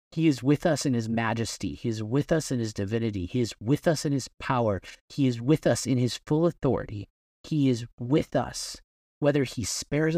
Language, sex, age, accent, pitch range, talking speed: English, male, 30-49, American, 115-155 Hz, 210 wpm